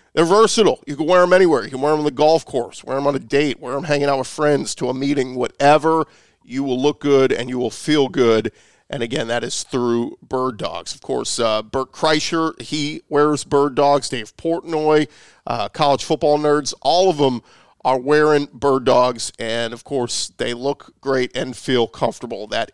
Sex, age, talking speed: male, 40-59, 205 wpm